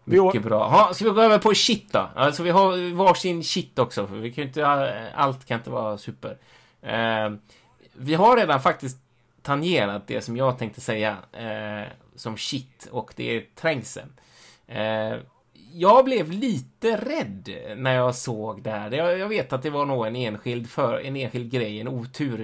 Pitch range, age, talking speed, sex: 110-170 Hz, 20-39, 170 wpm, male